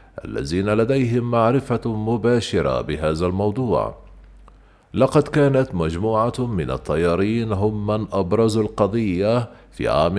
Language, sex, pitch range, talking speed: Arabic, male, 100-120 Hz, 100 wpm